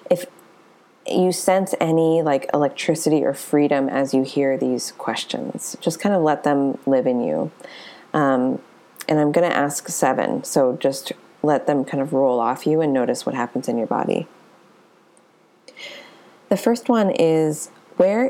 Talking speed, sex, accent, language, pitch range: 160 wpm, female, American, English, 140-185 Hz